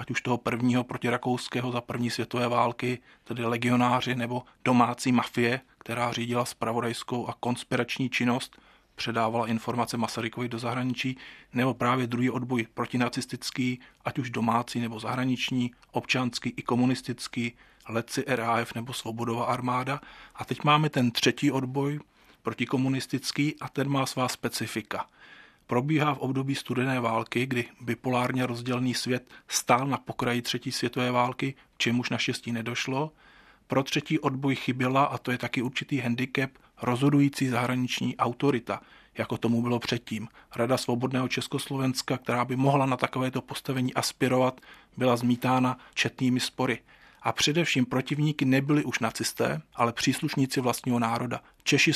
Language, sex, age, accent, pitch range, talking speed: Czech, male, 40-59, native, 120-130 Hz, 135 wpm